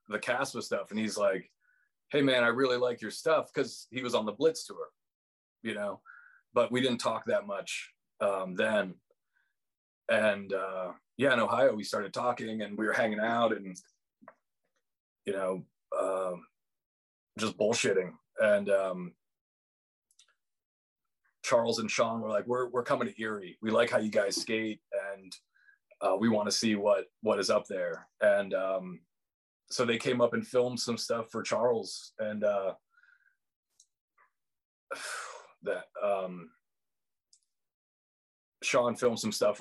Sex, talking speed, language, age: male, 150 wpm, English, 30-49